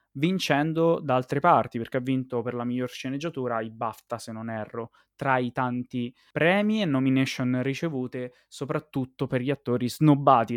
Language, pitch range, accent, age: Italian, 120-140 Hz, native, 20-39